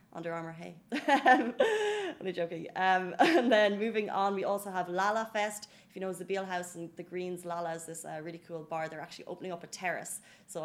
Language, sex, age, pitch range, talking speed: Arabic, female, 20-39, 170-195 Hz, 215 wpm